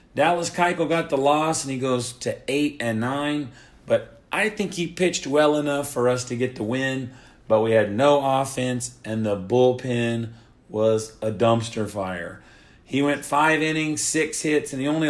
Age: 40-59